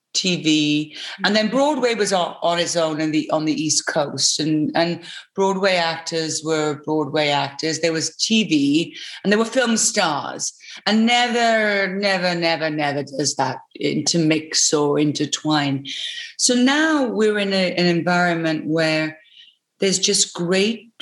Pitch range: 155-200 Hz